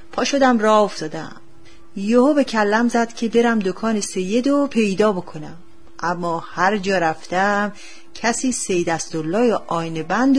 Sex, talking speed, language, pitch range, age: female, 135 wpm, Persian, 170-245 Hz, 40-59